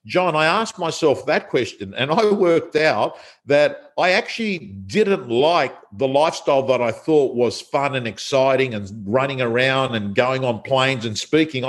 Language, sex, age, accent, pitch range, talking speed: English, male, 50-69, Australian, 130-170 Hz, 170 wpm